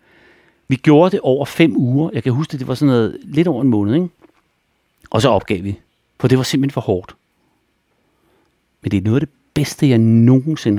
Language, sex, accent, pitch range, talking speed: Danish, male, native, 95-125 Hz, 210 wpm